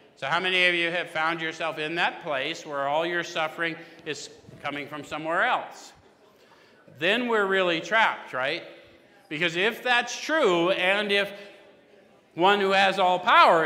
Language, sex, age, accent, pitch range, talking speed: English, male, 50-69, American, 145-185 Hz, 160 wpm